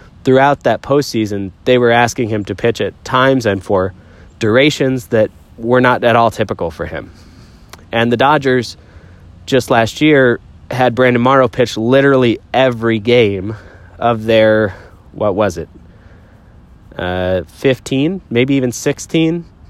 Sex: male